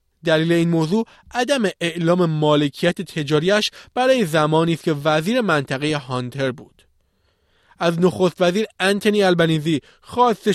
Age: 20-39